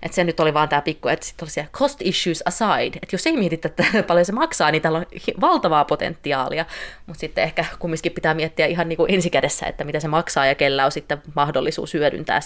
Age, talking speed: 20-39, 210 wpm